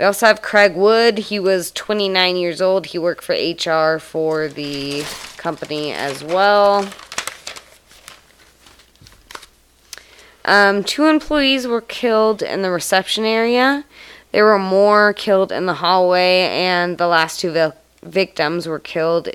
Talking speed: 130 wpm